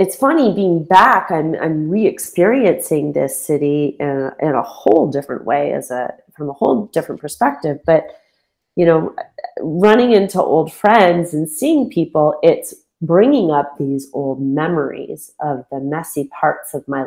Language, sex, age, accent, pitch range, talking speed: English, female, 30-49, American, 145-190 Hz, 160 wpm